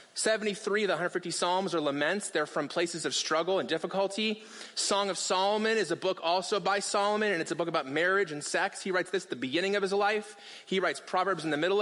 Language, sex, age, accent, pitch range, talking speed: English, male, 30-49, American, 170-205 Hz, 235 wpm